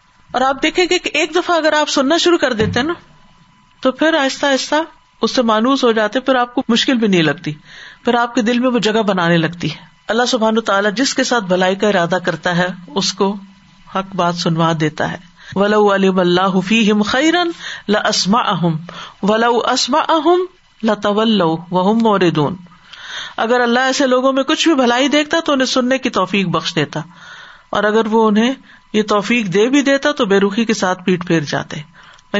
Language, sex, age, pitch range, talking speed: Urdu, female, 50-69, 180-245 Hz, 190 wpm